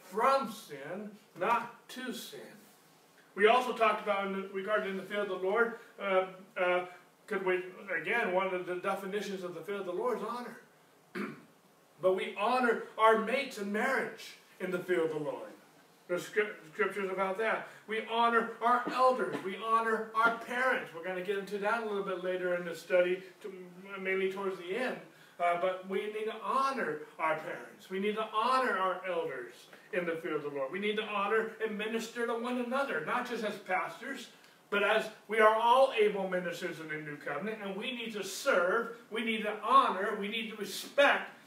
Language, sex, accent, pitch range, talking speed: English, male, American, 185-225 Hz, 195 wpm